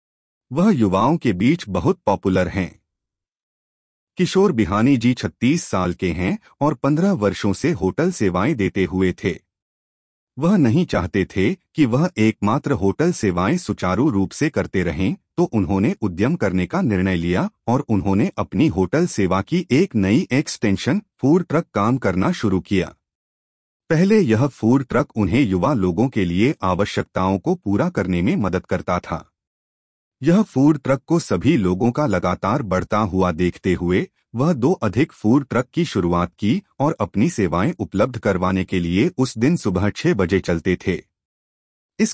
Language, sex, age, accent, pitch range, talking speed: Hindi, male, 30-49, native, 90-140 Hz, 160 wpm